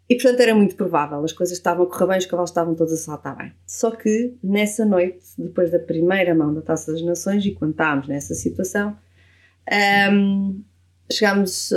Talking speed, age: 190 wpm, 20-39